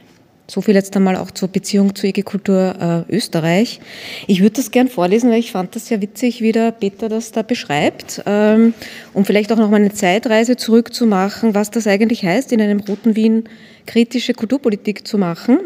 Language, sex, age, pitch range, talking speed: German, female, 20-39, 195-235 Hz, 180 wpm